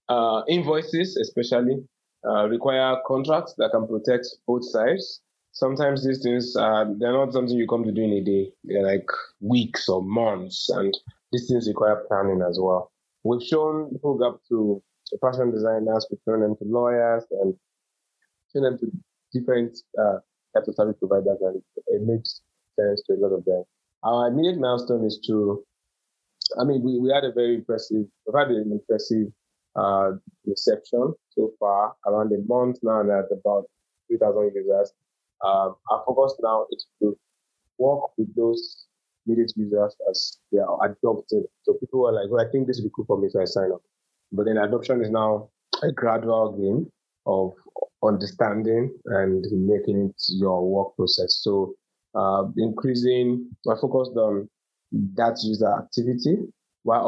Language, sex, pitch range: English, male, 105-130 Hz